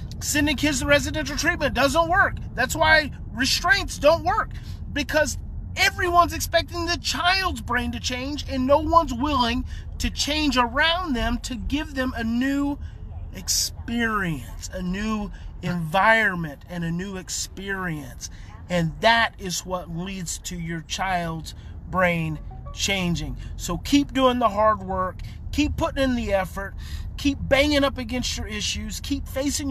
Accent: American